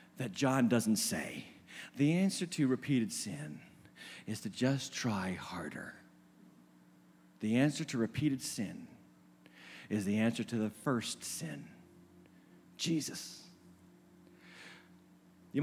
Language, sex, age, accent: English, male, 40-59, American